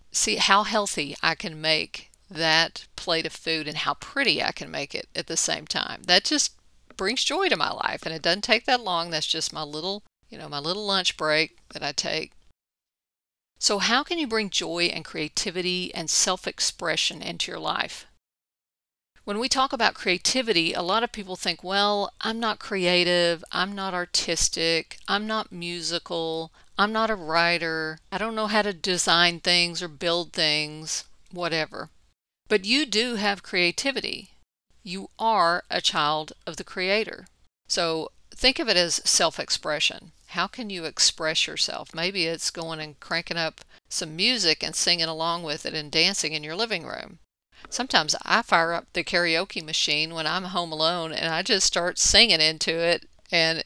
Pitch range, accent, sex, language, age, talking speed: 160-205 Hz, American, female, English, 40-59, 175 wpm